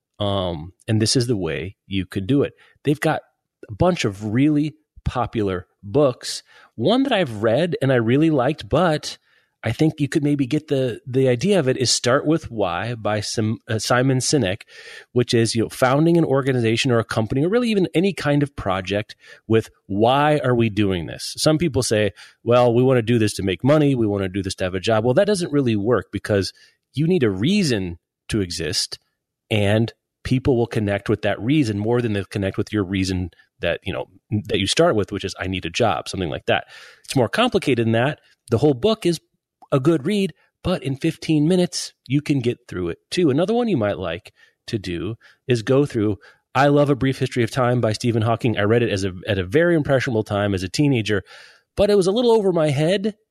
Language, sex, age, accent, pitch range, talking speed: English, male, 30-49, American, 105-150 Hz, 220 wpm